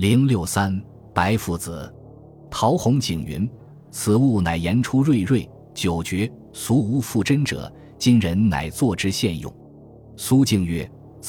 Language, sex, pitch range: Chinese, male, 90-120 Hz